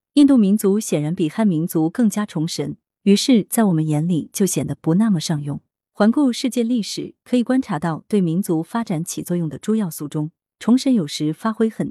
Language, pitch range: Chinese, 160-225 Hz